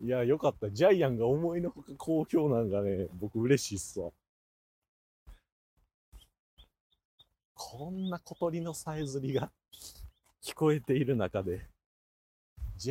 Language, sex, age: Japanese, male, 40-59